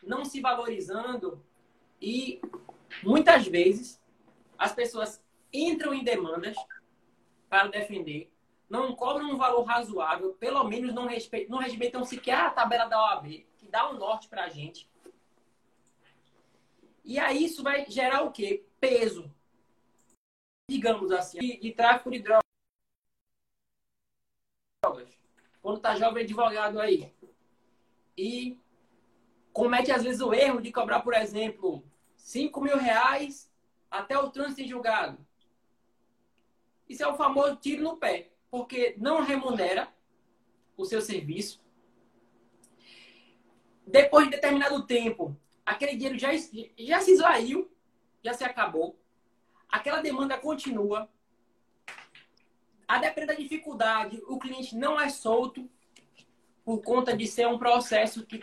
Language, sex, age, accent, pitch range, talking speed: Portuguese, male, 20-39, Brazilian, 195-270 Hz, 120 wpm